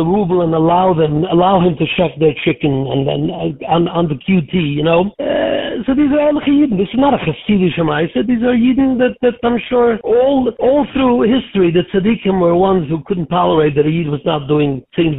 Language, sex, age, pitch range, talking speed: English, male, 60-79, 155-200 Hz, 230 wpm